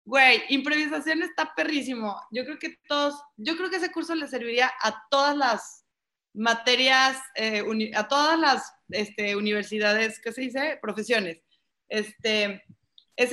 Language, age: Spanish, 20-39